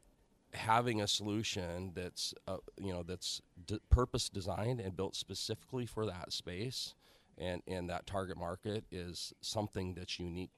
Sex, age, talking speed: male, 40-59, 145 wpm